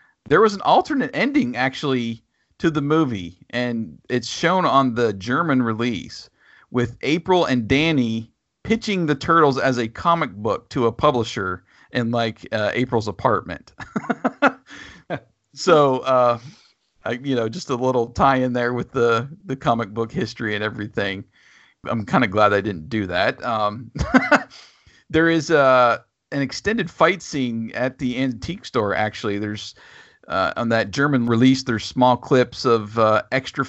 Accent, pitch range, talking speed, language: American, 115-135 Hz, 155 wpm, English